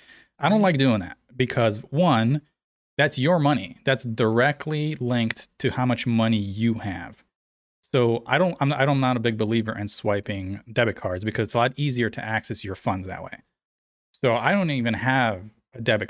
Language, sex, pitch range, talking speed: English, male, 110-140 Hz, 185 wpm